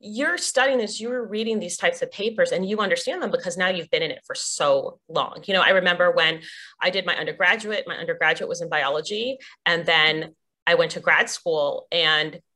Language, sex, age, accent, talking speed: English, female, 30-49, American, 210 wpm